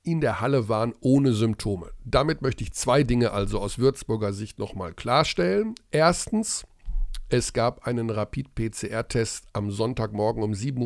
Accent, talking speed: German, 150 wpm